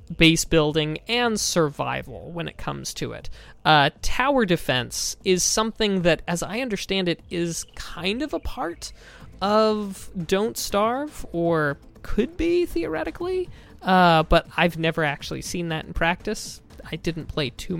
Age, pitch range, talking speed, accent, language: 20-39, 155-210 Hz, 150 wpm, American, English